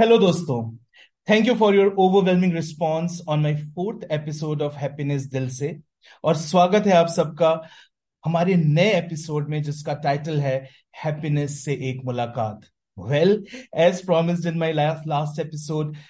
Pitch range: 145-185 Hz